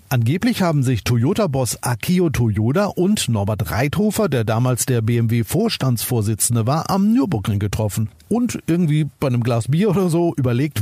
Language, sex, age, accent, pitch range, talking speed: German, male, 50-69, German, 120-175 Hz, 145 wpm